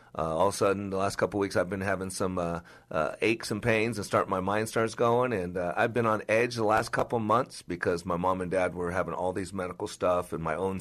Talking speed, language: 280 wpm, English